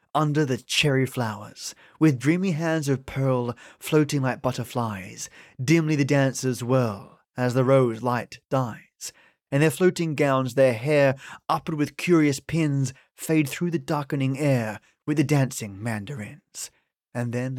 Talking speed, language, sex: 140 wpm, English, male